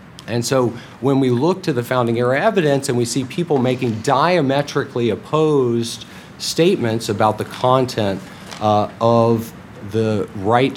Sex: male